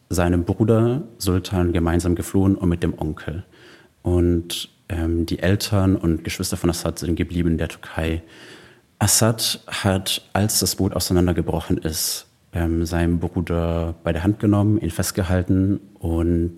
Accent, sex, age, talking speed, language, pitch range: German, male, 30-49, 140 wpm, German, 85-95 Hz